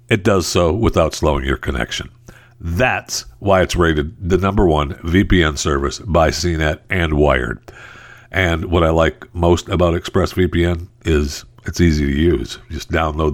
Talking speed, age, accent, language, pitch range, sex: 155 wpm, 60-79, American, English, 85-120 Hz, male